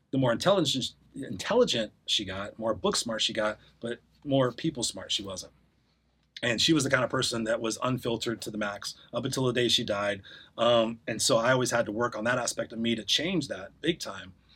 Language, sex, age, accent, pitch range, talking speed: English, male, 30-49, American, 115-150 Hz, 225 wpm